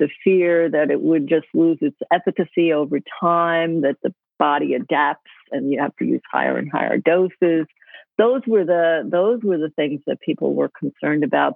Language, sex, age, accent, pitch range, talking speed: English, female, 50-69, American, 155-220 Hz, 185 wpm